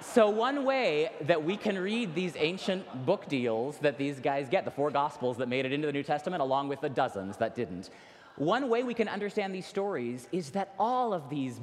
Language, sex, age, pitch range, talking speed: English, male, 30-49, 120-185 Hz, 220 wpm